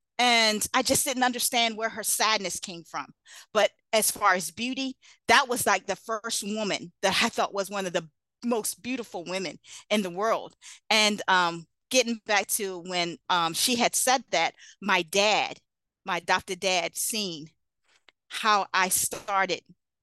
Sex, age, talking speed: female, 40-59, 160 wpm